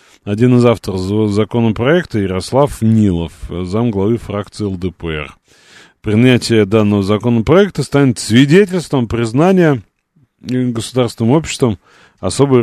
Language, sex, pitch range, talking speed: Russian, male, 95-135 Hz, 90 wpm